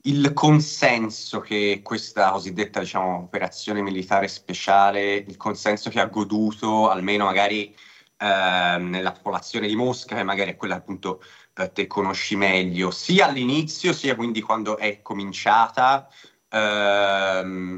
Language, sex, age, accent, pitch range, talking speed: Italian, male, 30-49, native, 95-115 Hz, 130 wpm